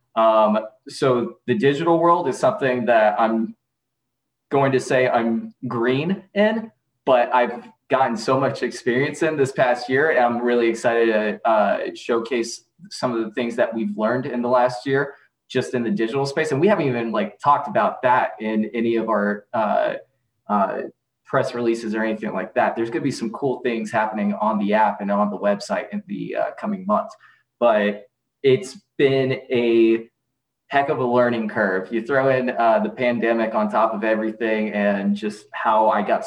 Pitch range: 110-135 Hz